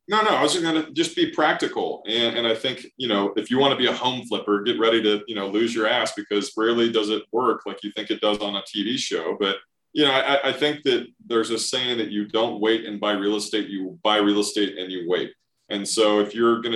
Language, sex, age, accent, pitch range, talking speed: English, male, 30-49, American, 105-120 Hz, 270 wpm